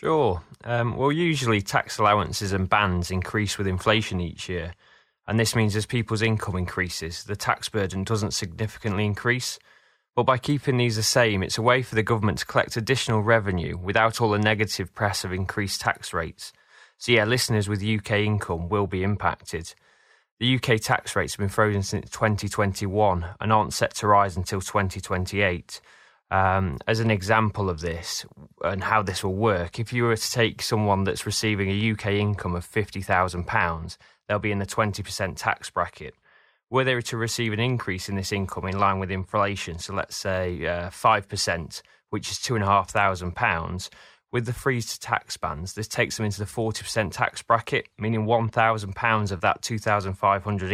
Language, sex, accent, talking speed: English, male, British, 170 wpm